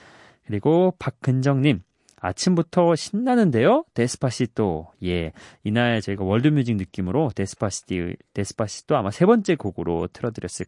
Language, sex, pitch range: Korean, male, 105-155 Hz